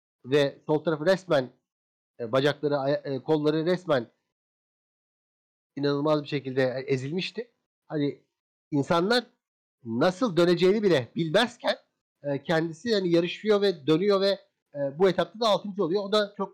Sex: male